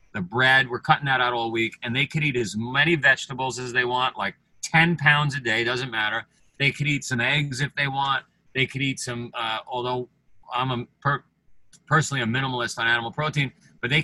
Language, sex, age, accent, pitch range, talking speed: English, male, 40-59, American, 115-150 Hz, 205 wpm